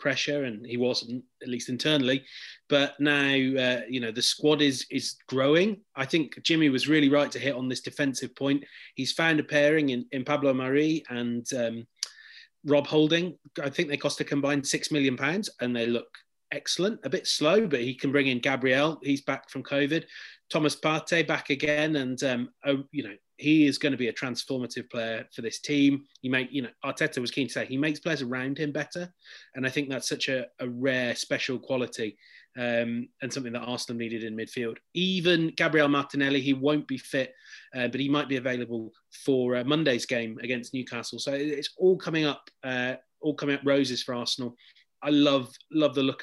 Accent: British